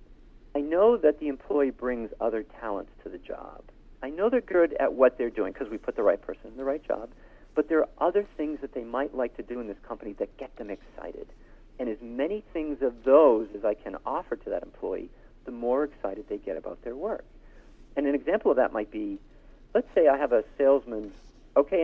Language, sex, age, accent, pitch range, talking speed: English, male, 50-69, American, 120-160 Hz, 225 wpm